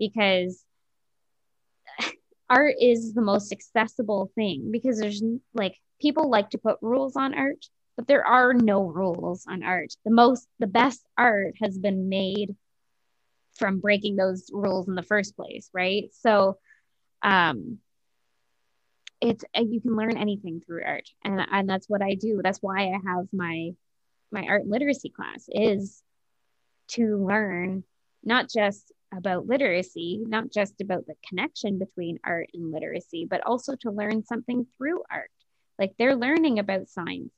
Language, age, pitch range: English, 20-39, 190-235 Hz